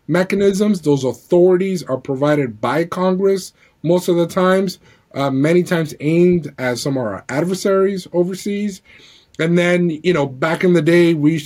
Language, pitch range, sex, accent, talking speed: English, 145-180 Hz, male, American, 160 wpm